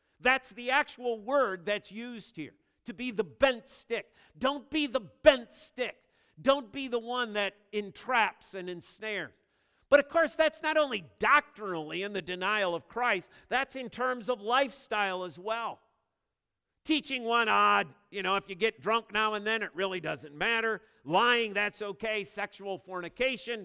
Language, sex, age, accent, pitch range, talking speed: English, male, 50-69, American, 170-240 Hz, 165 wpm